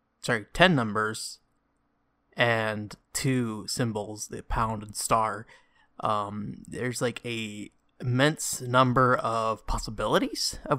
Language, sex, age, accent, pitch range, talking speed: English, male, 20-39, American, 115-140 Hz, 105 wpm